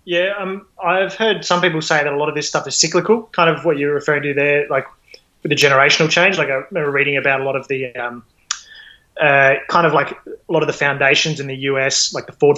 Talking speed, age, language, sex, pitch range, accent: 250 wpm, 20-39, English, male, 140-155 Hz, Australian